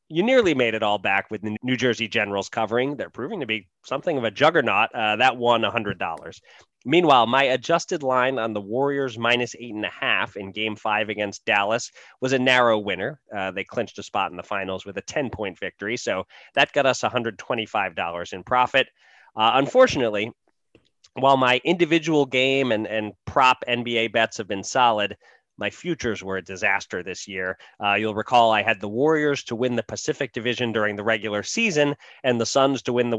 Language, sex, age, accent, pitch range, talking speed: English, male, 30-49, American, 105-130 Hz, 195 wpm